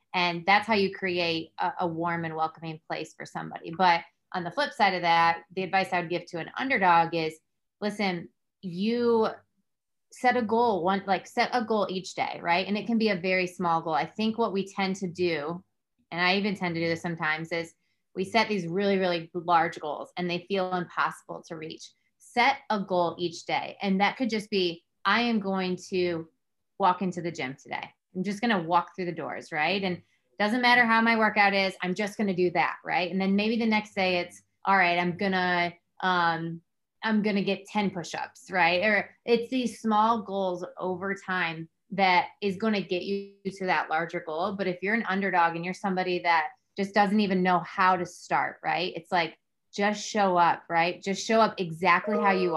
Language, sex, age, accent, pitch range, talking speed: English, female, 20-39, American, 170-205 Hz, 215 wpm